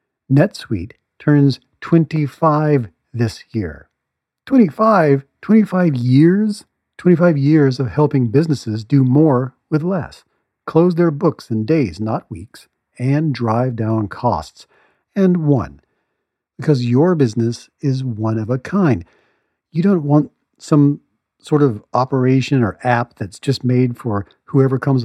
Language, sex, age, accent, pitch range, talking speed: English, male, 50-69, American, 115-155 Hz, 125 wpm